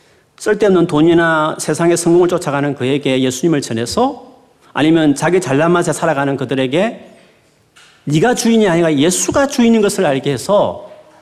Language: Korean